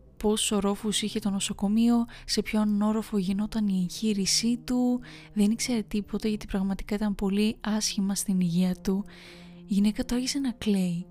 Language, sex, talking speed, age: Greek, female, 150 wpm, 20-39